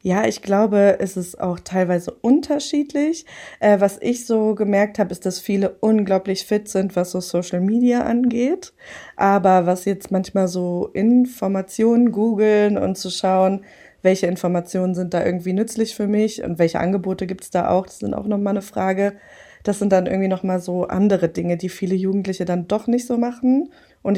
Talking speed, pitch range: 180 wpm, 180-210 Hz